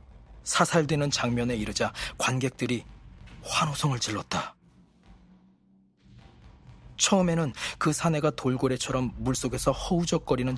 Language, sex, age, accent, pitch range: Korean, male, 40-59, native, 100-150 Hz